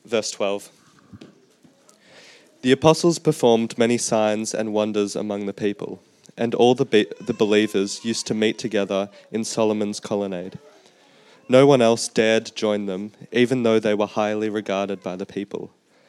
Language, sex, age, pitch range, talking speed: English, male, 20-39, 105-120 Hz, 145 wpm